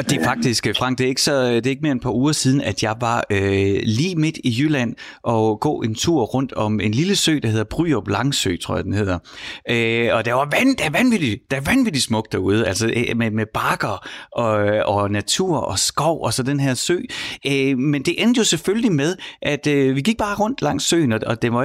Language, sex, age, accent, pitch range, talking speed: Danish, male, 30-49, native, 110-140 Hz, 230 wpm